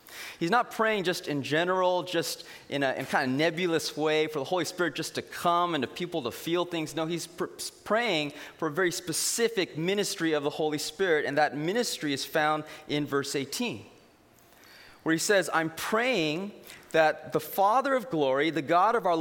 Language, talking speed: English, 195 wpm